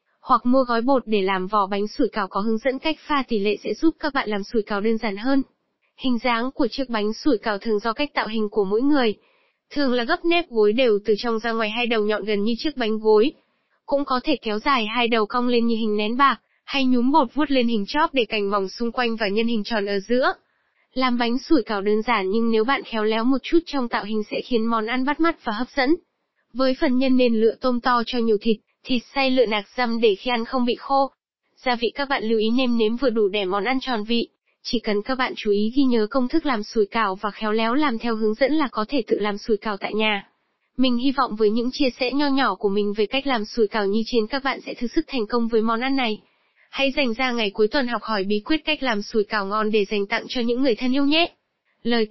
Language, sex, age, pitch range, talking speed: Vietnamese, female, 10-29, 215-265 Hz, 270 wpm